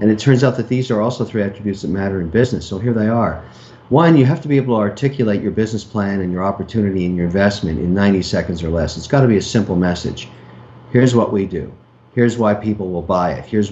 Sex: male